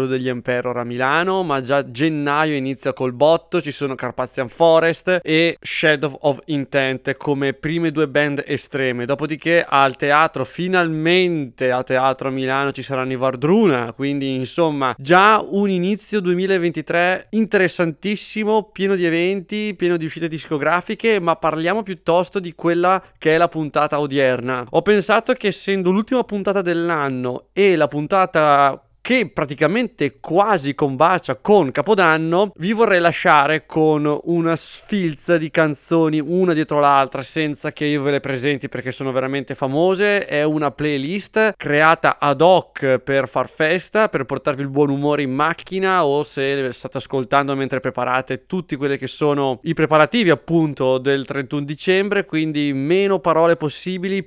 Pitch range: 140-180 Hz